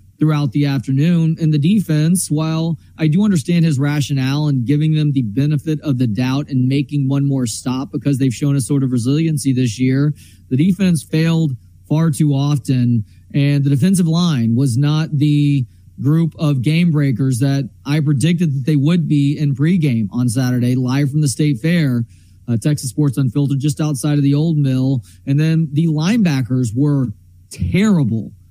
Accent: American